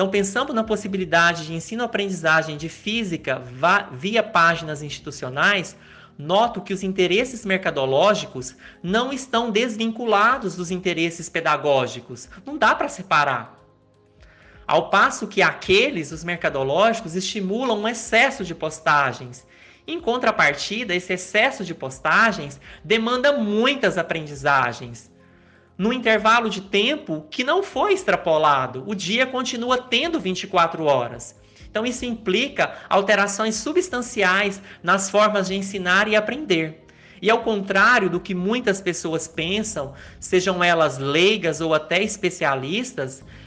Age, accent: 30-49, Brazilian